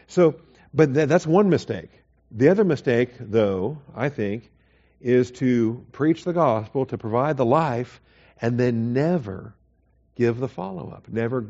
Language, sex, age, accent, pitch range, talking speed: English, male, 50-69, American, 100-130 Hz, 140 wpm